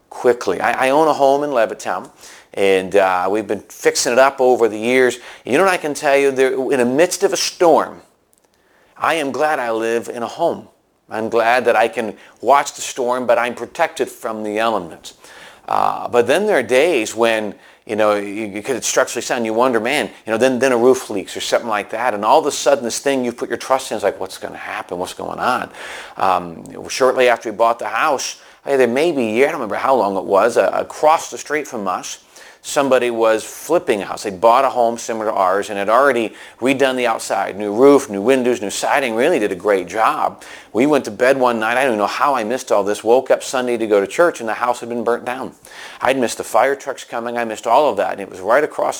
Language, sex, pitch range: English, male, 110-135 Hz